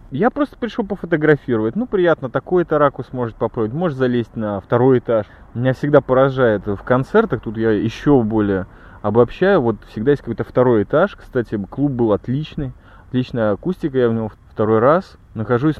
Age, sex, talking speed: 20-39, male, 165 wpm